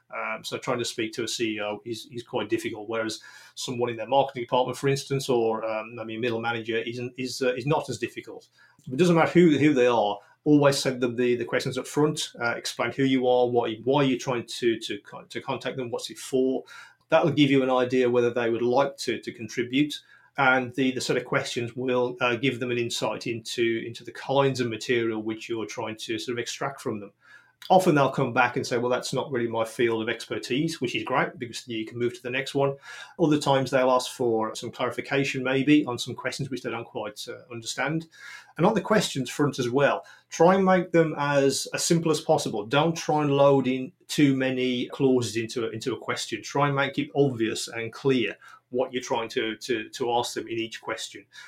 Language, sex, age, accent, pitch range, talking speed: English, male, 30-49, British, 120-145 Hz, 225 wpm